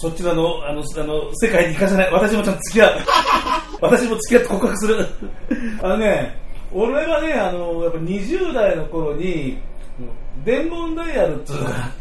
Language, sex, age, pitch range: Japanese, male, 40-59, 125-190 Hz